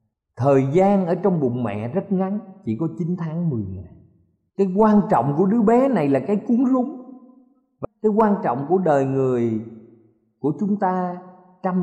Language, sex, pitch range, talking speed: Vietnamese, male, 130-205 Hz, 185 wpm